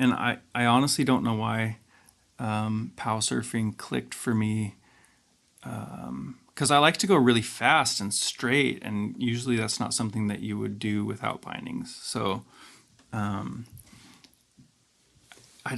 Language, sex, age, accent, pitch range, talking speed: English, male, 30-49, American, 110-125 Hz, 140 wpm